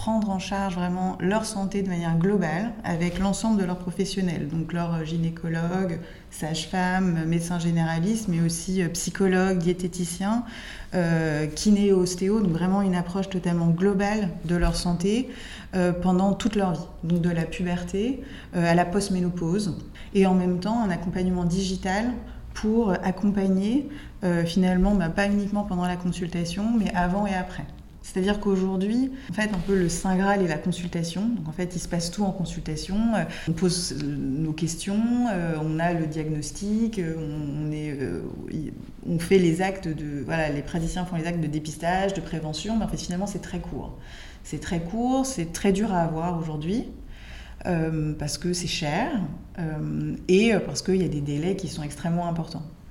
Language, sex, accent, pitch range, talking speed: French, female, French, 165-195 Hz, 160 wpm